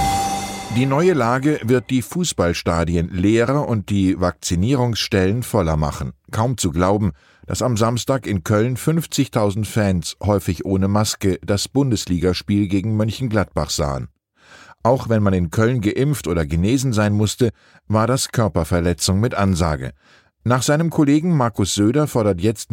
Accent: German